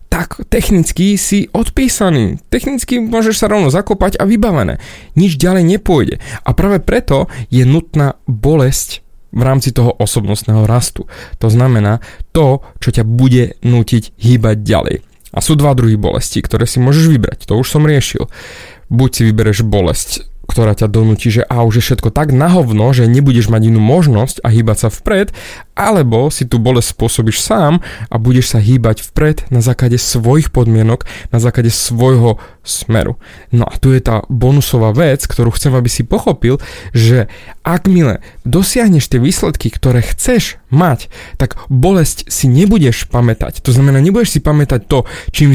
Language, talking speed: Slovak, 160 wpm